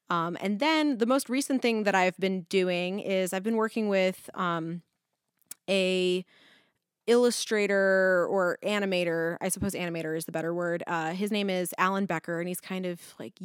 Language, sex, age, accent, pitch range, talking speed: English, female, 20-39, American, 175-200 Hz, 175 wpm